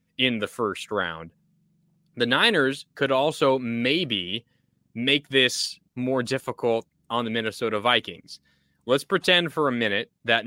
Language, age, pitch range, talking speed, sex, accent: English, 20-39, 115-150 Hz, 130 wpm, male, American